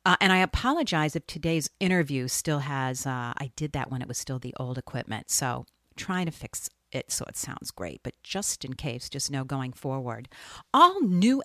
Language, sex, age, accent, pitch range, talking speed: English, female, 50-69, American, 130-175 Hz, 205 wpm